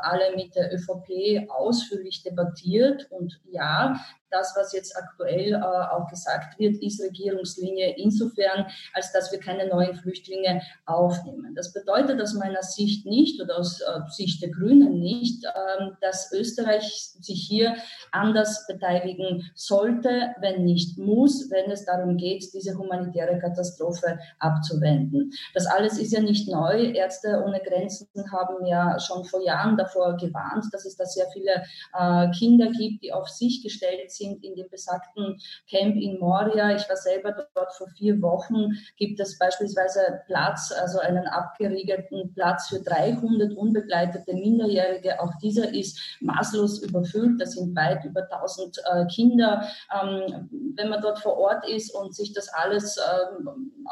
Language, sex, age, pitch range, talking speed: German, female, 20-39, 180-210 Hz, 150 wpm